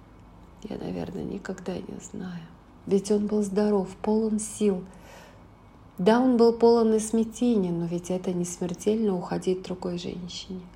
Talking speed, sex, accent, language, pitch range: 140 wpm, female, native, Russian, 185-220 Hz